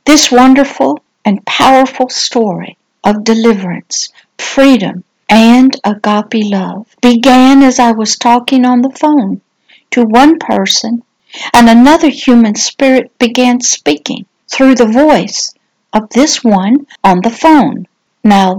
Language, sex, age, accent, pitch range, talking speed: English, female, 60-79, American, 210-270 Hz, 125 wpm